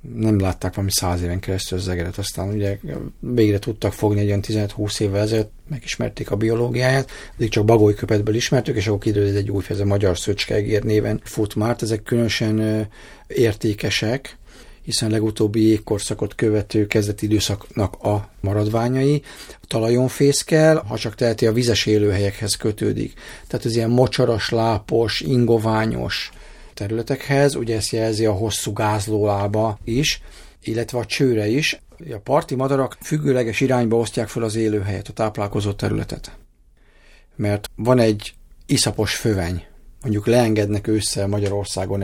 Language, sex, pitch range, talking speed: Hungarian, male, 100-115 Hz, 135 wpm